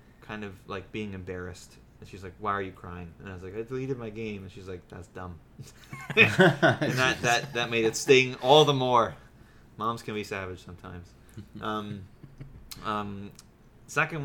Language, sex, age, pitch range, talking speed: English, male, 20-39, 100-125 Hz, 180 wpm